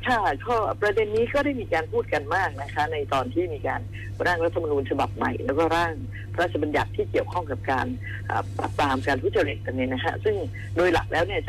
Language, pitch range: Thai, 100-135 Hz